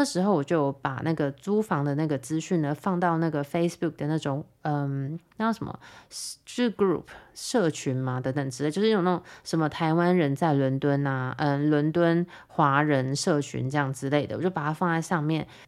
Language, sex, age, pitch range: Chinese, female, 20-39, 150-195 Hz